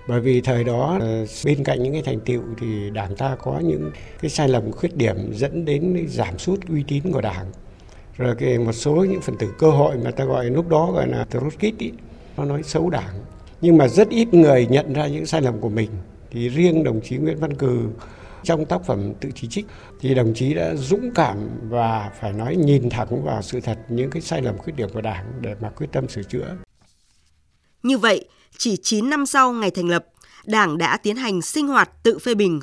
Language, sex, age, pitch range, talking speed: Vietnamese, male, 60-79, 125-210 Hz, 220 wpm